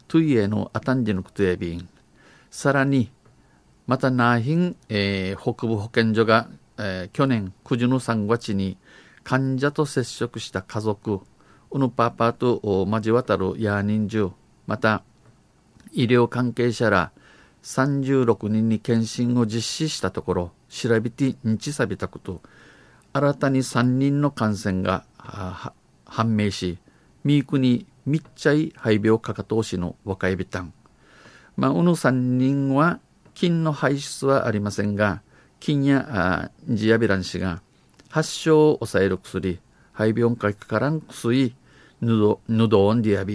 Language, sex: Japanese, male